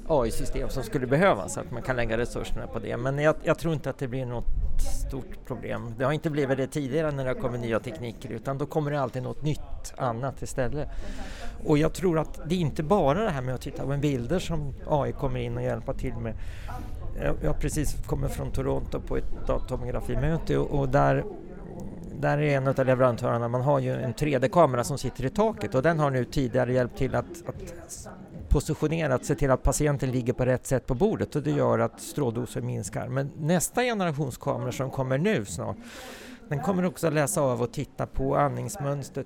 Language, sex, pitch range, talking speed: Swedish, male, 125-155 Hz, 210 wpm